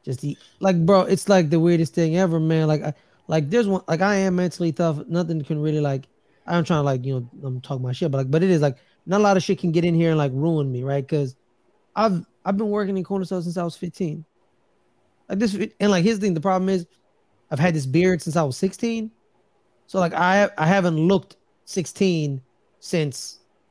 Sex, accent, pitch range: male, American, 155-220 Hz